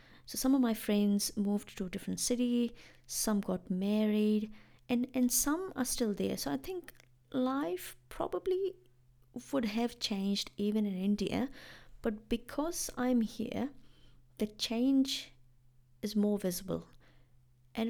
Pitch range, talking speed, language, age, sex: 195-245 Hz, 135 wpm, English, 30-49, female